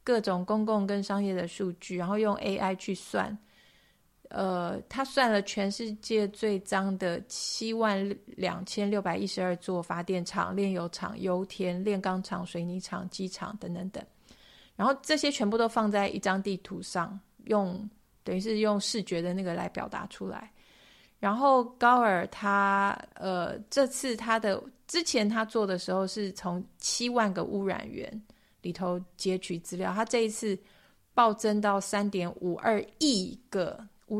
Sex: female